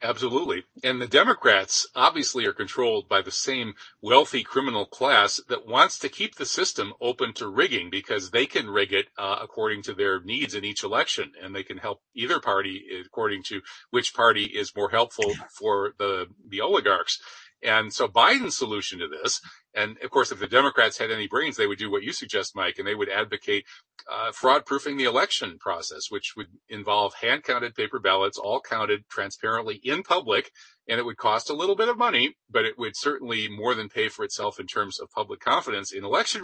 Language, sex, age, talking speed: English, male, 40-59, 200 wpm